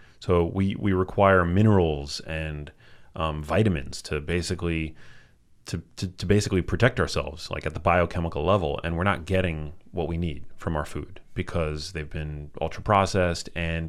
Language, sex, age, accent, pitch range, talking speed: English, male, 30-49, American, 80-105 Hz, 145 wpm